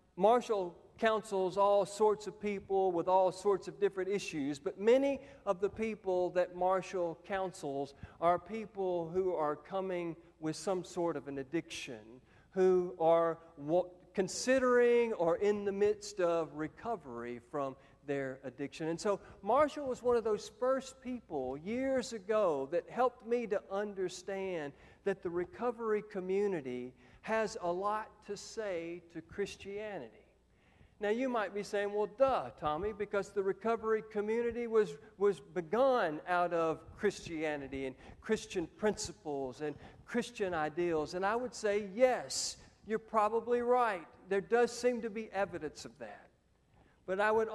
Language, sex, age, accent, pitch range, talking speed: English, male, 50-69, American, 170-220 Hz, 145 wpm